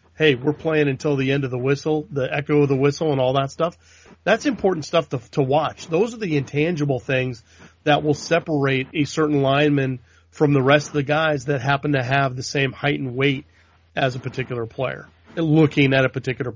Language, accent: English, American